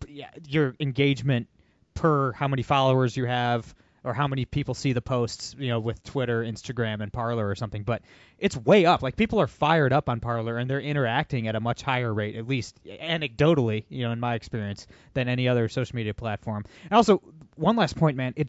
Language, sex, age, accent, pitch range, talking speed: English, male, 20-39, American, 120-155 Hz, 210 wpm